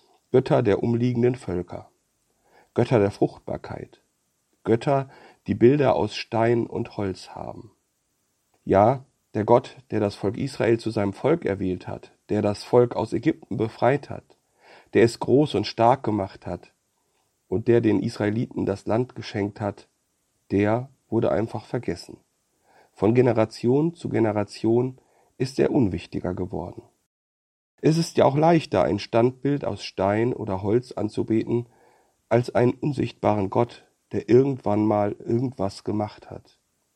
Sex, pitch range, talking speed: male, 100-125 Hz, 135 wpm